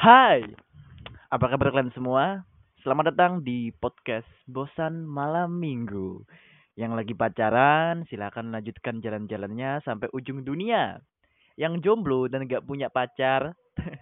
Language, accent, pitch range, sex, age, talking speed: Indonesian, native, 120-160 Hz, male, 20-39, 115 wpm